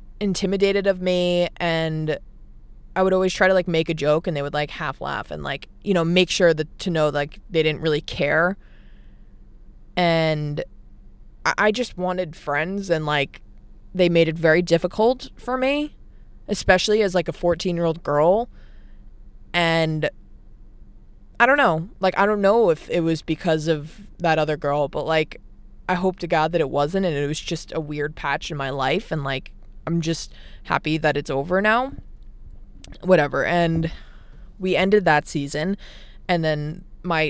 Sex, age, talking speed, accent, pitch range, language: female, 20-39, 175 wpm, American, 150-185 Hz, English